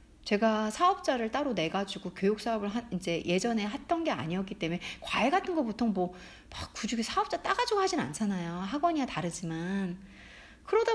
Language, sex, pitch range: Korean, female, 195-315 Hz